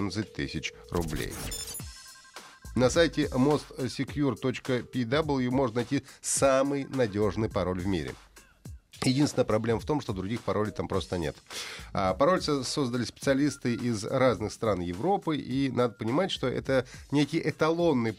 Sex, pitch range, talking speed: male, 105-145 Hz, 120 wpm